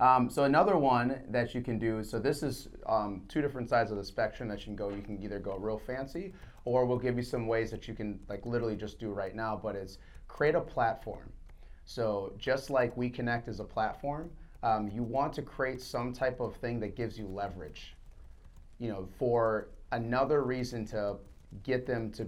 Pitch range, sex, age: 105-125 Hz, male, 30-49